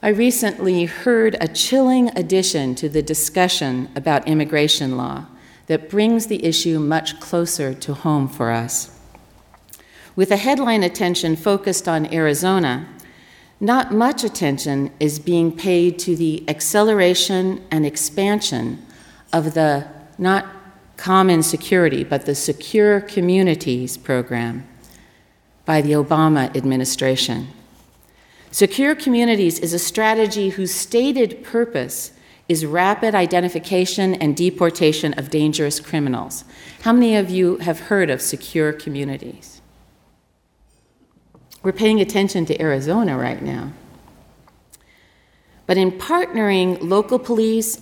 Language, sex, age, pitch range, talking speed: English, female, 50-69, 150-200 Hz, 115 wpm